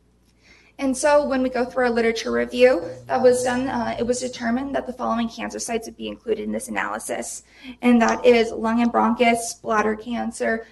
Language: English